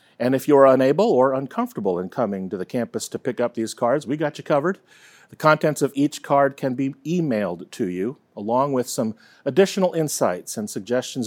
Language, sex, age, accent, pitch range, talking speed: English, male, 40-59, American, 110-145 Hz, 195 wpm